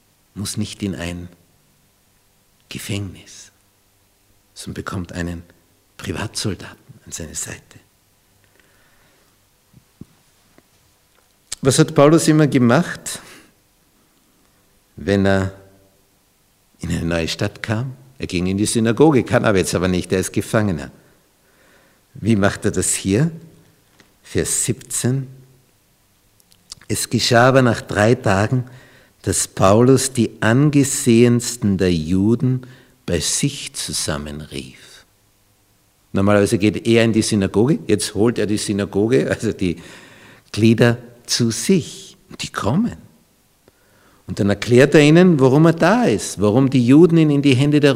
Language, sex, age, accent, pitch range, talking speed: German, male, 60-79, Austrian, 100-125 Hz, 120 wpm